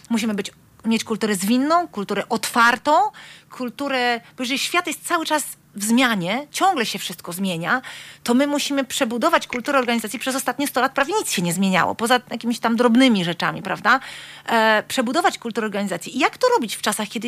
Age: 40-59